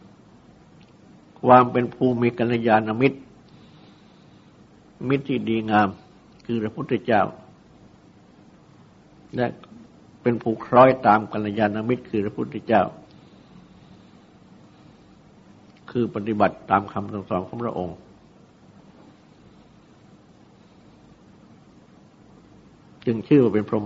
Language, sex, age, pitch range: Thai, male, 60-79, 105-120 Hz